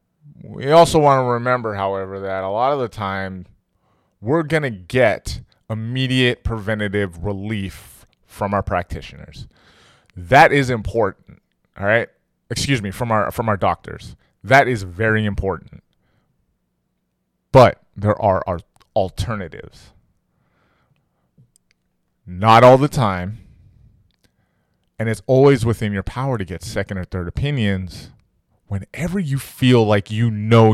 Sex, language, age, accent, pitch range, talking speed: male, English, 20-39, American, 95-125 Hz, 125 wpm